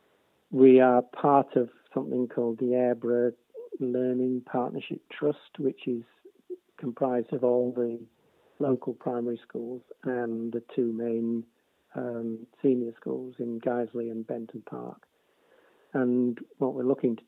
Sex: male